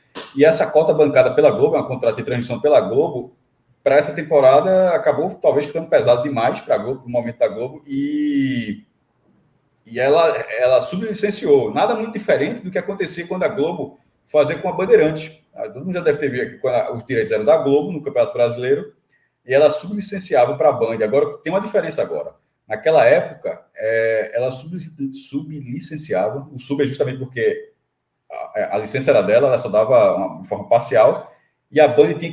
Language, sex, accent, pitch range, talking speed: Portuguese, male, Brazilian, 145-200 Hz, 180 wpm